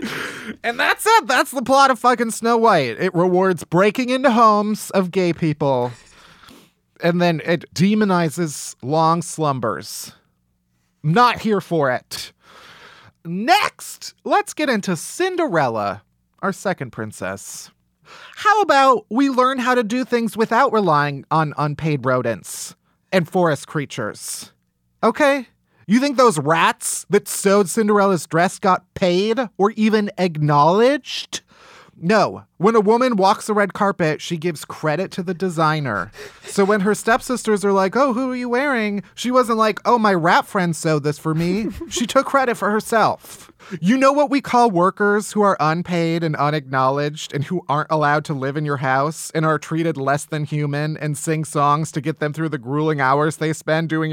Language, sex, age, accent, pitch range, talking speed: English, male, 30-49, American, 155-225 Hz, 160 wpm